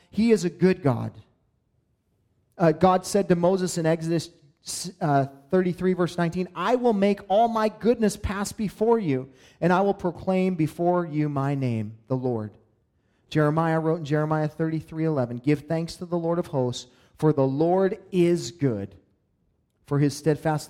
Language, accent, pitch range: English, American, 135-185 Hz